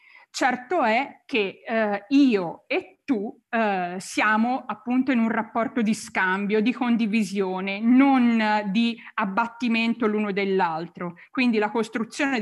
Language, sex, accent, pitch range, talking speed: Italian, female, native, 210-250 Hz, 125 wpm